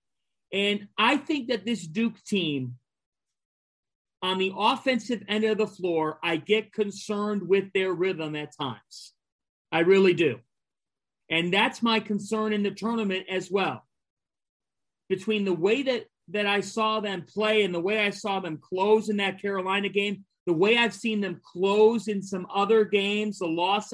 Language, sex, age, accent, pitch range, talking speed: English, male, 40-59, American, 175-215 Hz, 165 wpm